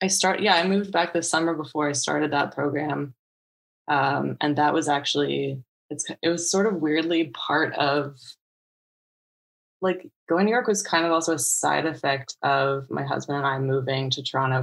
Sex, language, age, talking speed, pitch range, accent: female, English, 20-39, 190 wpm, 130-150 Hz, American